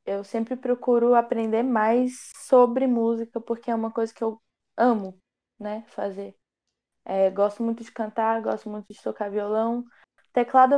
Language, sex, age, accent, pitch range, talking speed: Portuguese, female, 10-29, Brazilian, 215-245 Hz, 150 wpm